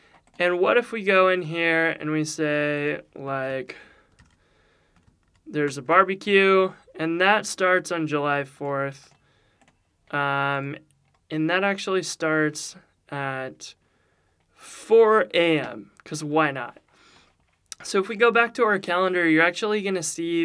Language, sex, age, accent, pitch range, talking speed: English, male, 20-39, American, 140-175 Hz, 130 wpm